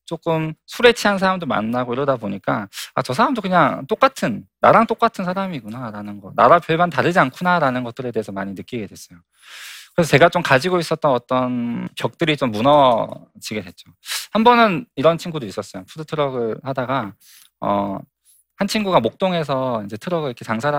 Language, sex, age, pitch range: Korean, male, 20-39, 110-170 Hz